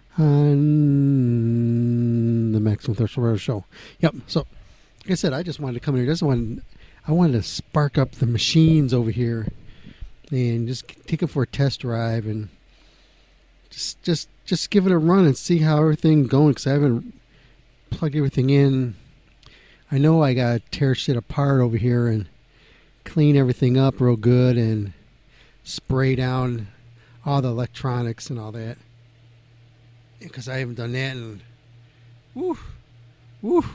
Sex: male